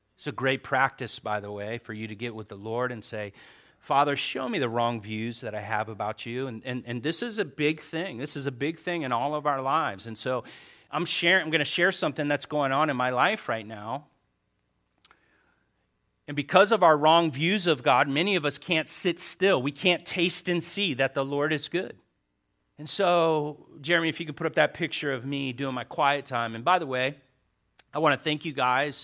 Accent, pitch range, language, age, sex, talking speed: American, 115-150 Hz, English, 40-59, male, 225 wpm